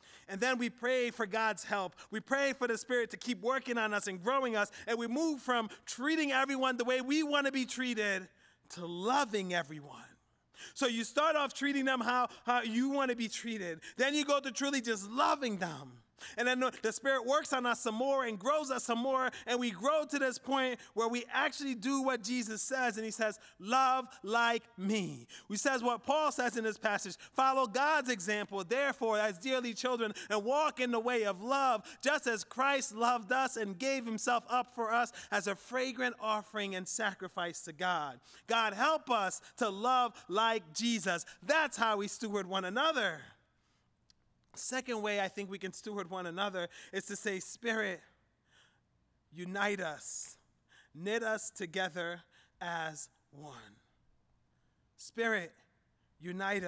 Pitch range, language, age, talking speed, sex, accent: 190-255 Hz, English, 30-49, 175 wpm, male, American